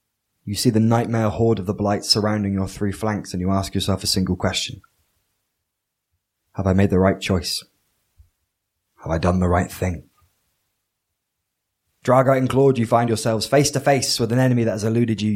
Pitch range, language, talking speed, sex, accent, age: 90-110 Hz, English, 185 wpm, male, British, 20-39